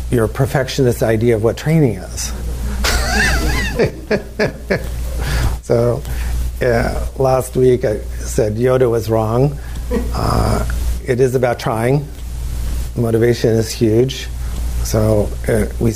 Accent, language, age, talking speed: American, English, 50-69, 100 wpm